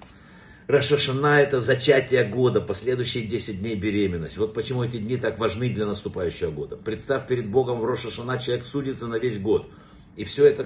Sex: male